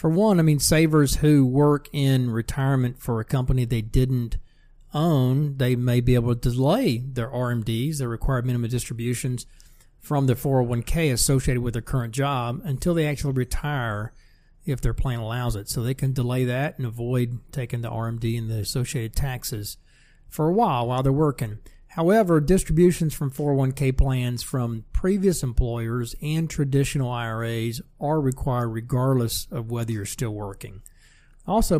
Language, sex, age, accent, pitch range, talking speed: English, male, 40-59, American, 120-150 Hz, 160 wpm